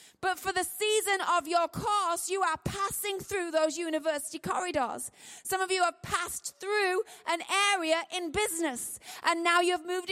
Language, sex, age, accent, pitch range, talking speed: English, female, 30-49, British, 330-385 Hz, 165 wpm